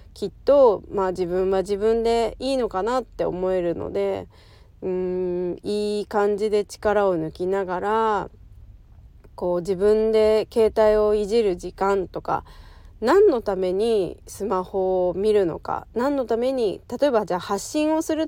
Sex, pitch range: female, 180-220 Hz